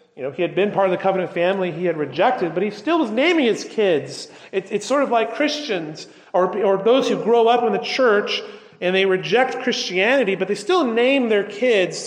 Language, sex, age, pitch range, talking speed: English, male, 40-59, 135-205 Hz, 225 wpm